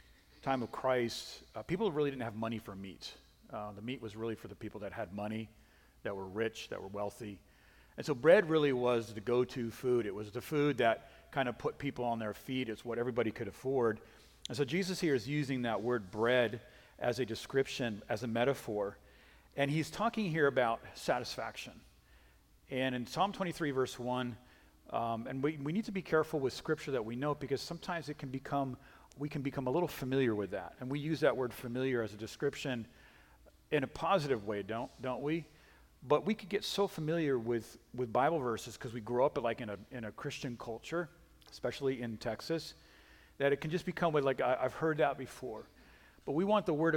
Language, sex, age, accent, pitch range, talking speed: English, male, 40-59, American, 115-145 Hz, 210 wpm